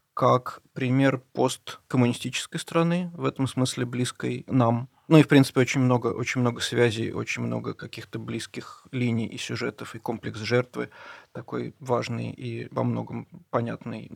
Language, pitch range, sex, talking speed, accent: Russian, 115-135 Hz, male, 145 wpm, native